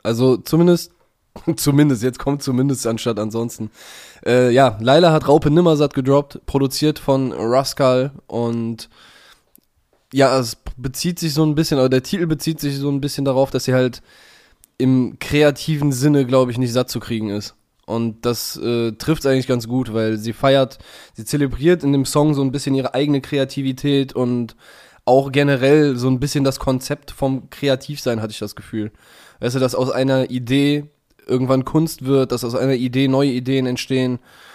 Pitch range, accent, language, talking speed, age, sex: 120-140 Hz, German, German, 175 wpm, 10-29, male